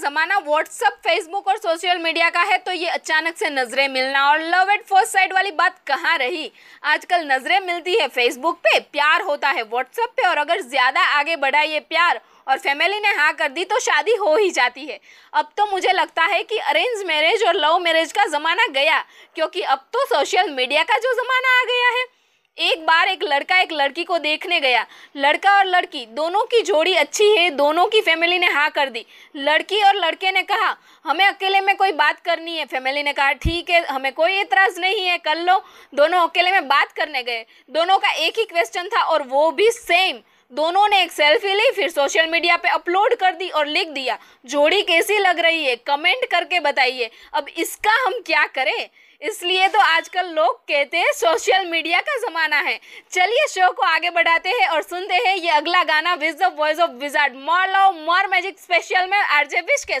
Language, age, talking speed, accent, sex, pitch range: Hindi, 20-39, 205 wpm, native, female, 300-385 Hz